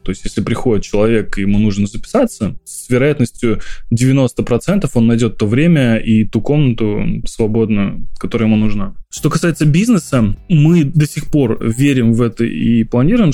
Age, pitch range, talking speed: 20-39, 115-140 Hz, 155 wpm